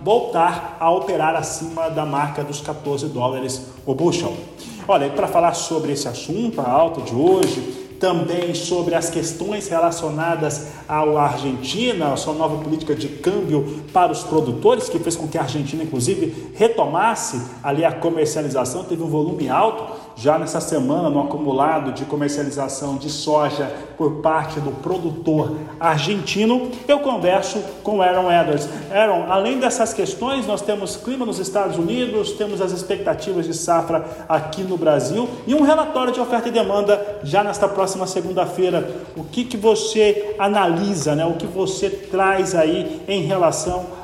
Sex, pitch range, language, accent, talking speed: male, 155-195 Hz, Portuguese, Brazilian, 155 wpm